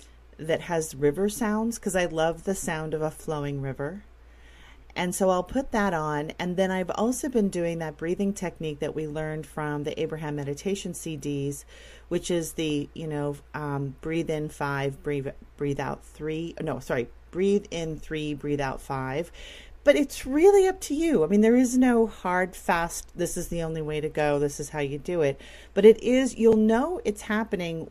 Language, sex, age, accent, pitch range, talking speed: English, female, 40-59, American, 150-205 Hz, 195 wpm